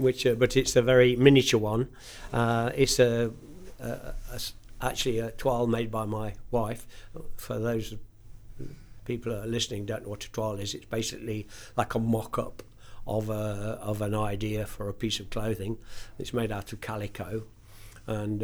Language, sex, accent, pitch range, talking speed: English, male, British, 105-115 Hz, 175 wpm